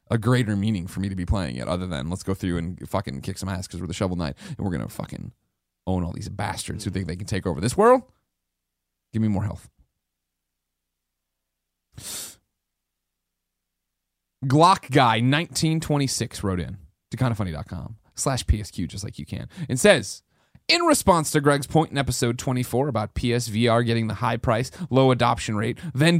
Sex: male